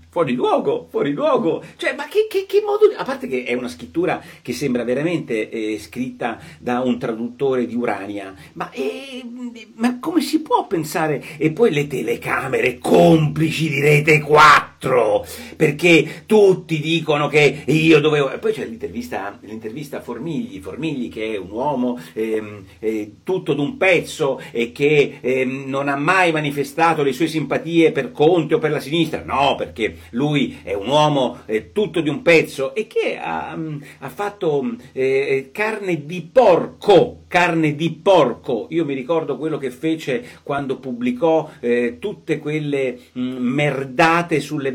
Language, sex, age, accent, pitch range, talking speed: Italian, male, 40-59, native, 125-180 Hz, 155 wpm